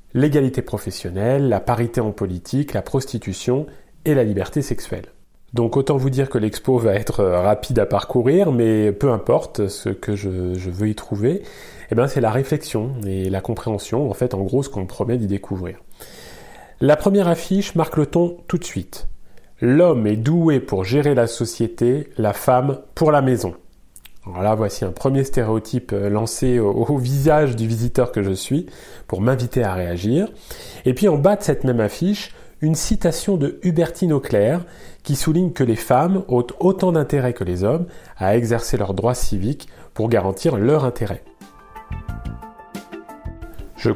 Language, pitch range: French, 105-145 Hz